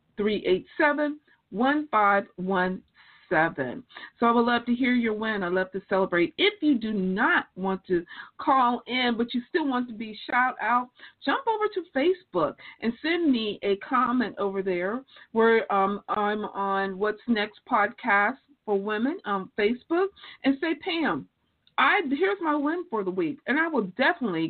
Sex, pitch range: female, 195-260 Hz